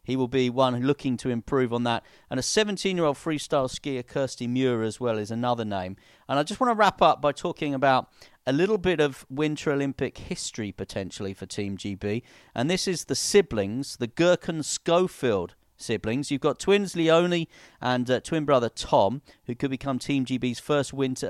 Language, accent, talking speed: English, British, 190 wpm